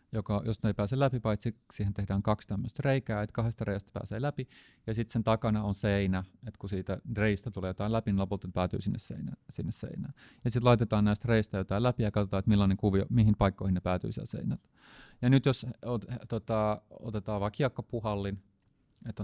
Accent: native